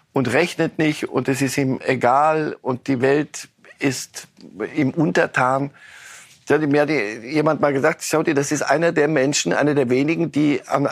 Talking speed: 165 wpm